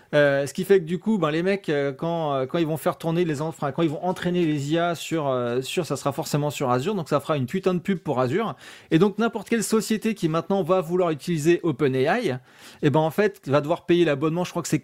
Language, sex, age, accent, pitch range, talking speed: French, male, 30-49, French, 145-185 Hz, 265 wpm